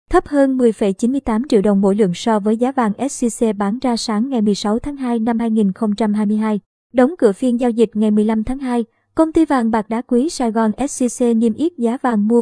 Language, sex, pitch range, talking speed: Vietnamese, male, 215-255 Hz, 215 wpm